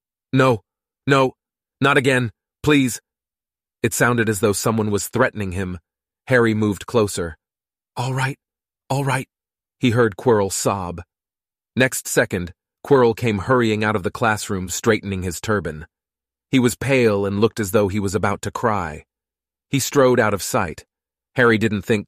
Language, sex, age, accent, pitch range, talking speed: English, male, 30-49, American, 95-115 Hz, 150 wpm